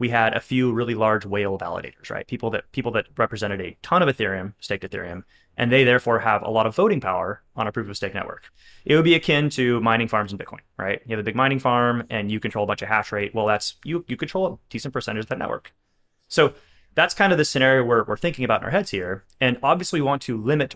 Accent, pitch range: American, 105-130 Hz